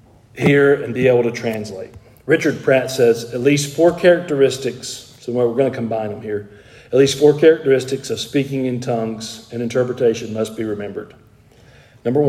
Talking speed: 165 wpm